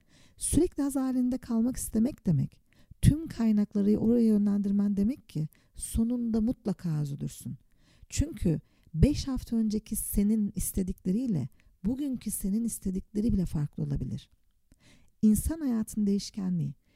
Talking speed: 105 wpm